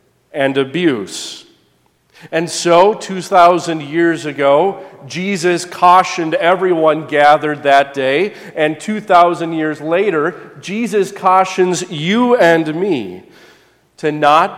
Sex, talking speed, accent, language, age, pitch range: male, 100 wpm, American, English, 40-59, 140-180 Hz